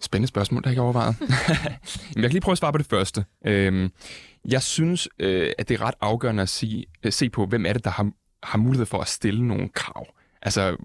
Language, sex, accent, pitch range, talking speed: Danish, male, native, 100-130 Hz, 220 wpm